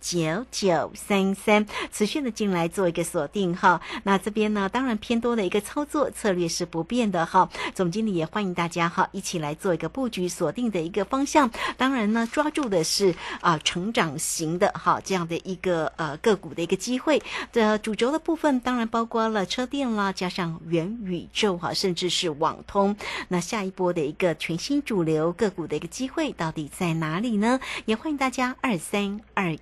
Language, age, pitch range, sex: Chinese, 50-69, 175-225 Hz, female